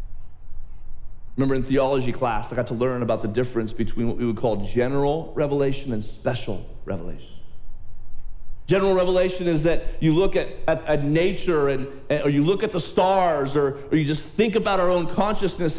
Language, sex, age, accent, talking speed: English, male, 40-59, American, 185 wpm